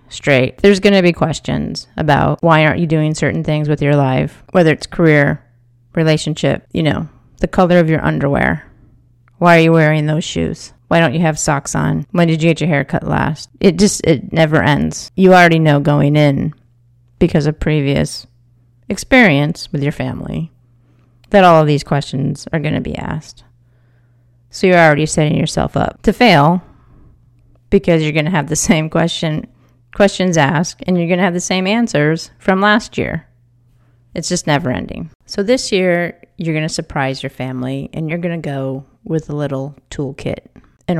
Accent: American